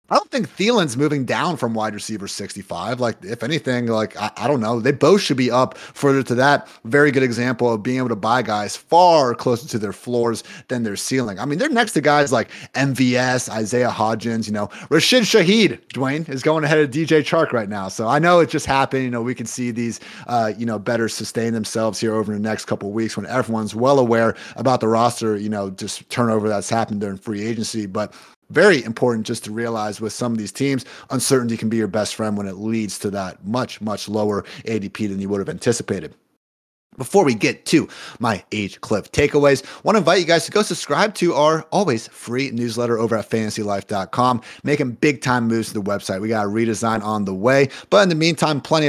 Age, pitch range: 30-49, 110-135 Hz